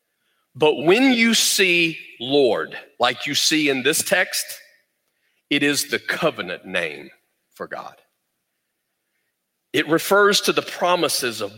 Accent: American